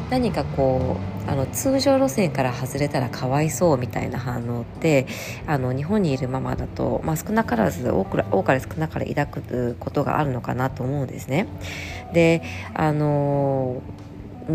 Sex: female